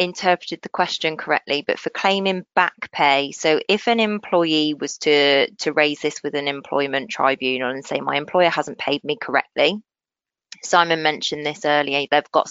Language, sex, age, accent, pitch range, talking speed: English, female, 20-39, British, 150-185 Hz, 175 wpm